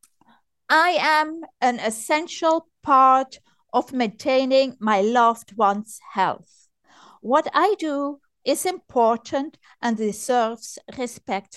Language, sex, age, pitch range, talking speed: English, female, 50-69, 240-310 Hz, 100 wpm